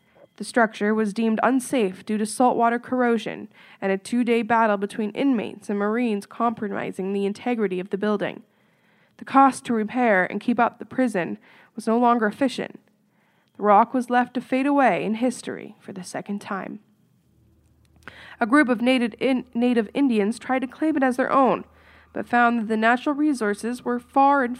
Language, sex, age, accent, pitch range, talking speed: English, female, 10-29, American, 210-250 Hz, 175 wpm